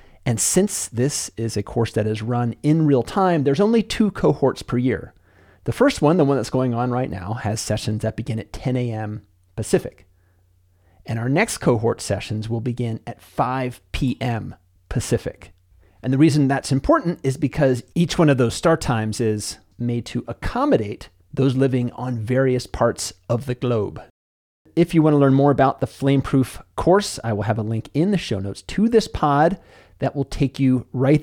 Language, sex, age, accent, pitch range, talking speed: English, male, 40-59, American, 105-145 Hz, 190 wpm